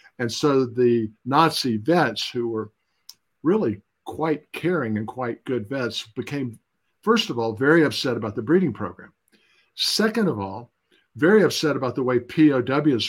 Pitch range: 115-140 Hz